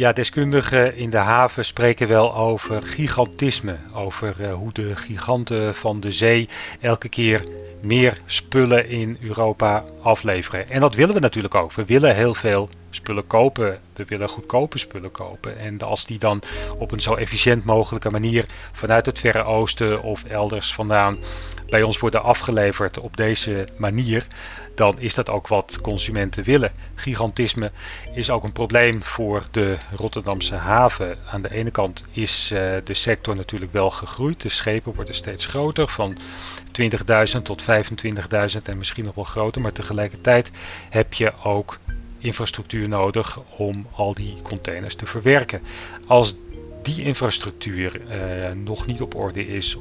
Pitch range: 95-115 Hz